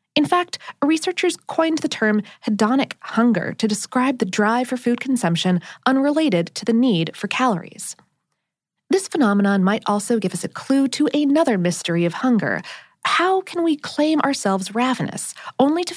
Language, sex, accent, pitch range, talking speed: English, female, American, 195-285 Hz, 160 wpm